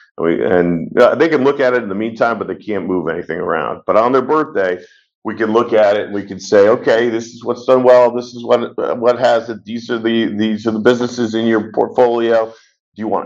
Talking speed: 245 wpm